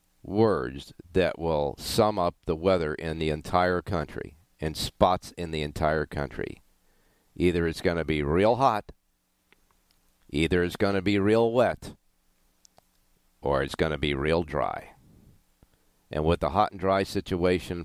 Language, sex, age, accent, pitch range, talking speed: English, male, 50-69, American, 70-90 Hz, 150 wpm